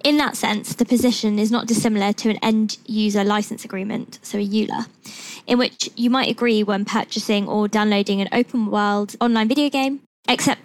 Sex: female